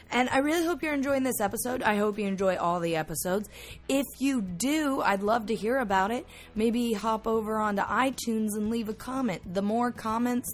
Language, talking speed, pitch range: English, 205 wpm, 180-240 Hz